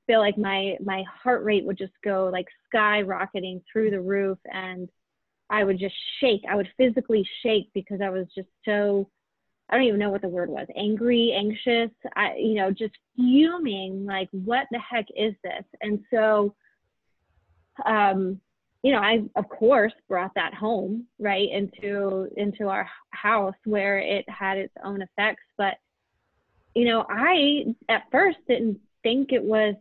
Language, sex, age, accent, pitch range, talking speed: English, female, 20-39, American, 195-230 Hz, 160 wpm